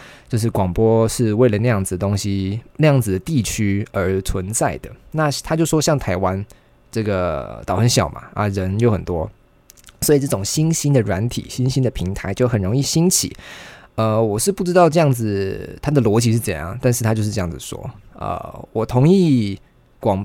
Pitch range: 95-125 Hz